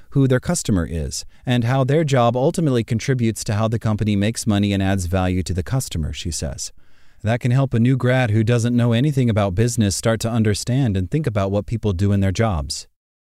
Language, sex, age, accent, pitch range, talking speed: English, male, 30-49, American, 90-120 Hz, 215 wpm